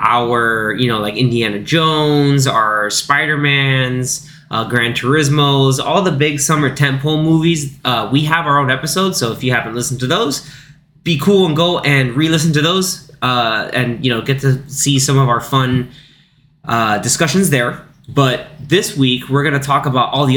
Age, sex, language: 20-39, male, English